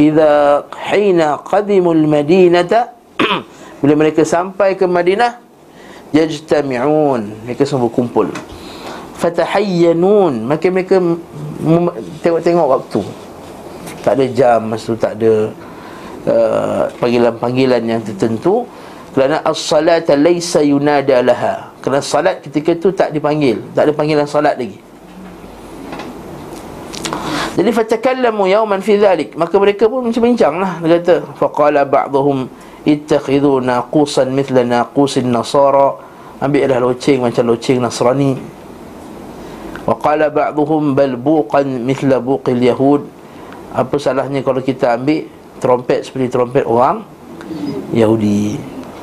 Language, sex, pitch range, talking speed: Malay, male, 130-170 Hz, 105 wpm